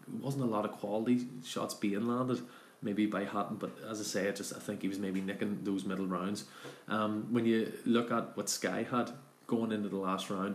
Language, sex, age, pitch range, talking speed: English, male, 20-39, 95-110 Hz, 220 wpm